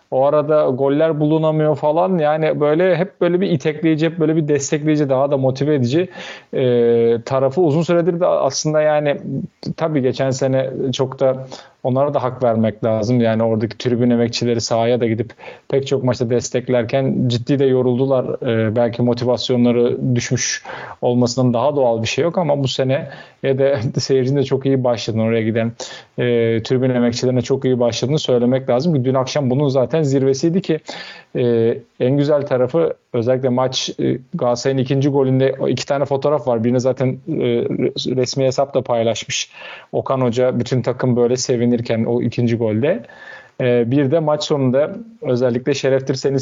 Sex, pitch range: male, 120-145 Hz